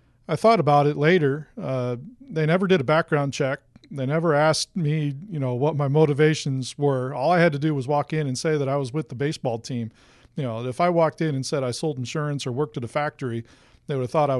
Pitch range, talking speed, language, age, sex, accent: 125-155 Hz, 250 wpm, English, 40-59, male, American